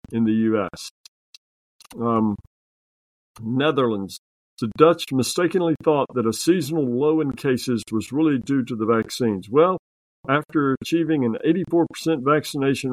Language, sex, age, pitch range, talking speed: English, male, 50-69, 110-145 Hz, 125 wpm